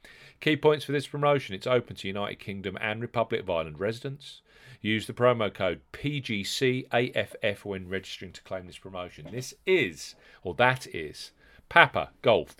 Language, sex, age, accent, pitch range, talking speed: English, male, 40-59, British, 100-140 Hz, 155 wpm